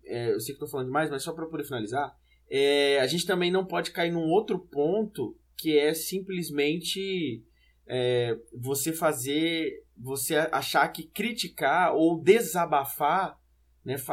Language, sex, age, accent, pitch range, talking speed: Portuguese, male, 20-39, Brazilian, 125-165 Hz, 135 wpm